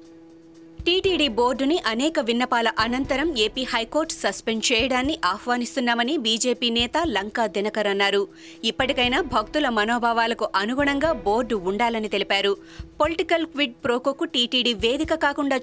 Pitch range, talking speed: 205-270 Hz, 110 wpm